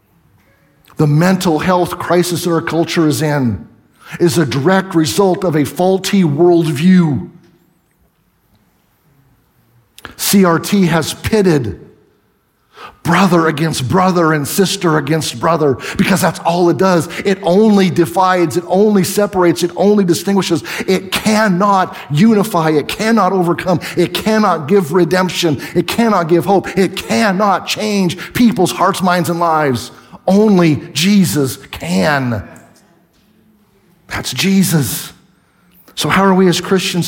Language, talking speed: English, 120 wpm